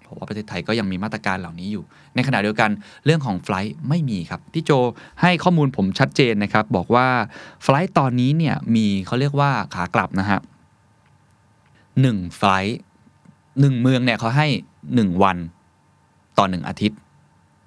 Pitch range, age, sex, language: 95-135 Hz, 20-39, male, Thai